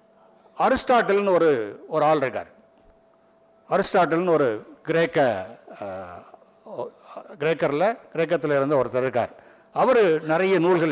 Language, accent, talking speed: Tamil, native, 90 wpm